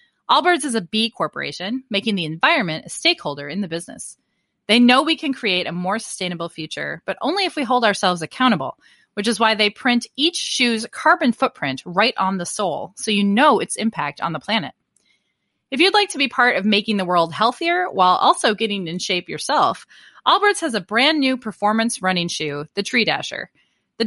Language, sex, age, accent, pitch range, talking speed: English, female, 30-49, American, 175-265 Hz, 195 wpm